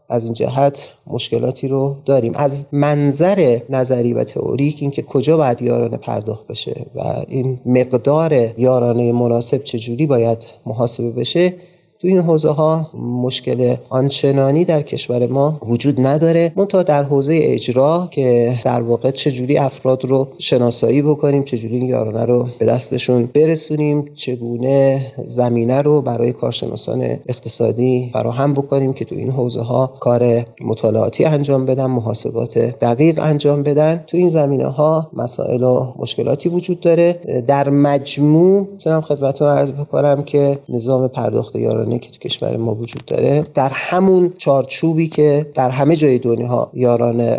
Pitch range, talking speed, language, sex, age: 120-150 Hz, 140 wpm, Persian, male, 30-49